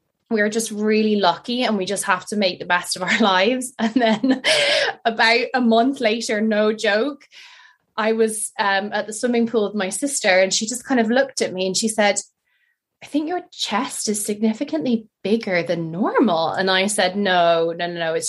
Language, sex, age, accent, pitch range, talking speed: English, female, 20-39, Irish, 195-250 Hz, 205 wpm